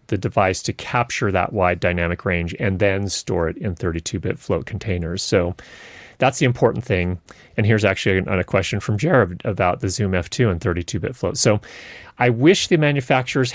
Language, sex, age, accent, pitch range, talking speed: English, male, 30-49, American, 95-120 Hz, 175 wpm